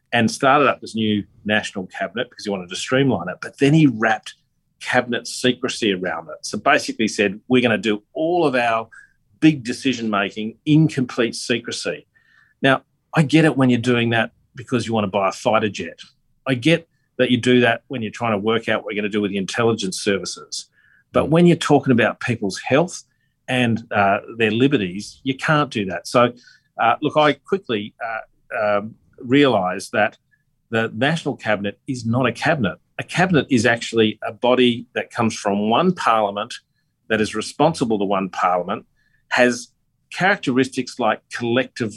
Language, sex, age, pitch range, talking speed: English, male, 40-59, 105-130 Hz, 180 wpm